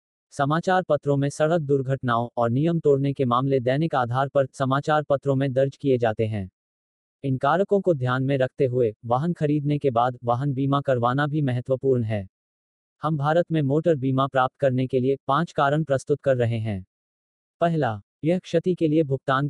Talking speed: 180 wpm